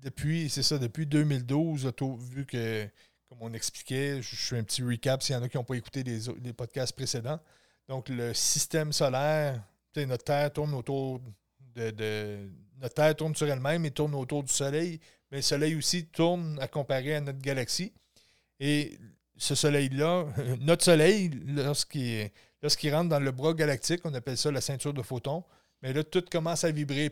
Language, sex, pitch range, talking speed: French, male, 130-150 Hz, 185 wpm